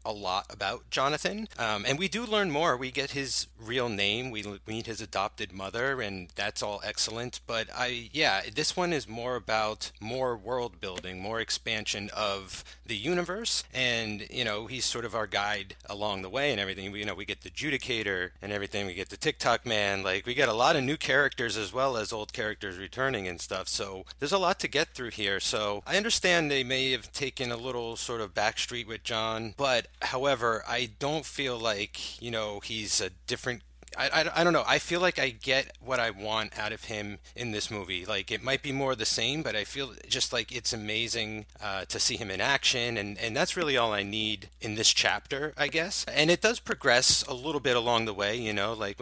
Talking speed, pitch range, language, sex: 220 wpm, 105-135 Hz, English, male